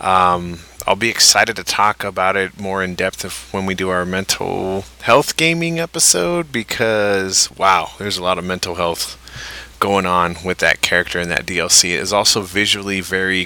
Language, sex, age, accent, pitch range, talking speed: English, male, 30-49, American, 90-110 Hz, 180 wpm